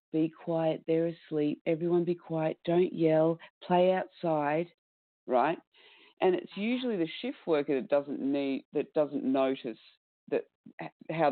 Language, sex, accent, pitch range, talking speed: English, female, Australian, 135-175 Hz, 140 wpm